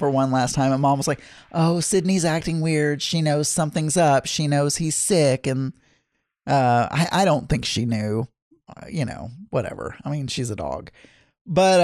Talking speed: 195 wpm